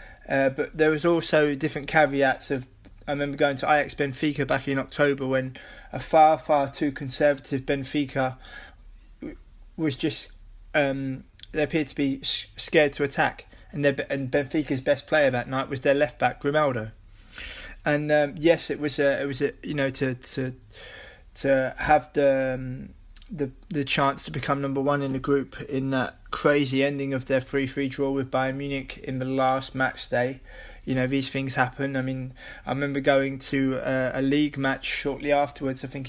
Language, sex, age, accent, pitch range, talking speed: English, male, 20-39, British, 130-145 Hz, 185 wpm